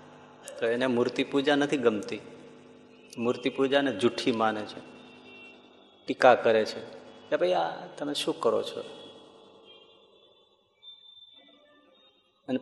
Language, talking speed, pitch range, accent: Gujarati, 105 wpm, 120-155 Hz, native